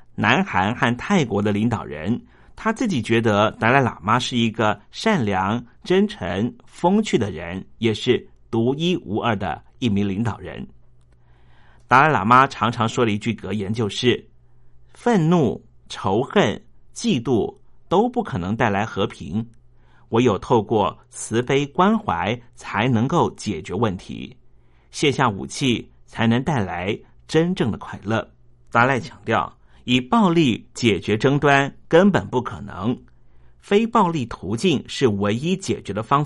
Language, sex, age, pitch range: Chinese, male, 50-69, 105-140 Hz